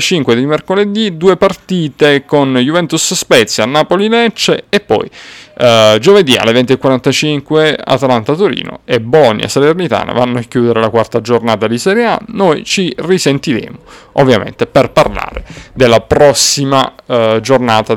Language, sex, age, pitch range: Italian, male, 30-49, 115-185 Hz